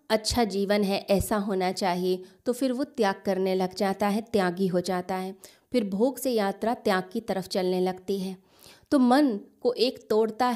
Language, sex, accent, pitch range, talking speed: Hindi, female, native, 190-225 Hz, 190 wpm